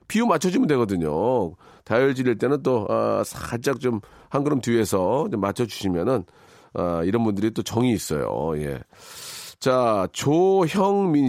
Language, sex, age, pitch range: Korean, male, 40-59, 115-145 Hz